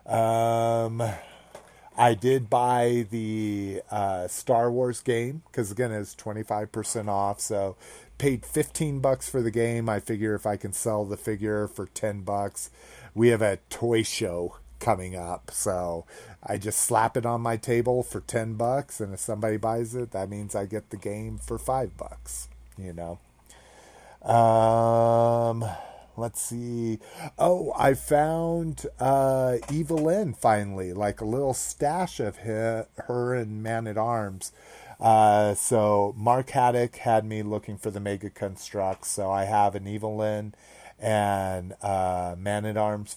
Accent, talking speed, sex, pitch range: American, 140 wpm, male, 105-120 Hz